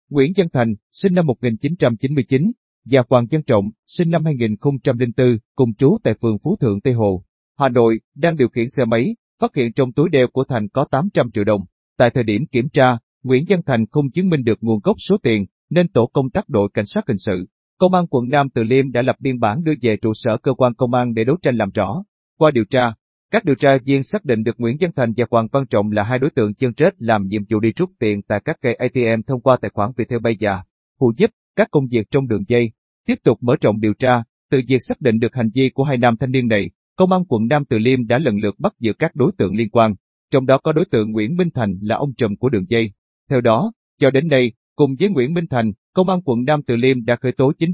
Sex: male